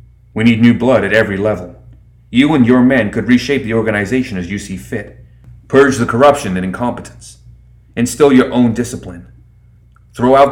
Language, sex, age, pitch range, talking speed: English, male, 30-49, 95-120 Hz, 170 wpm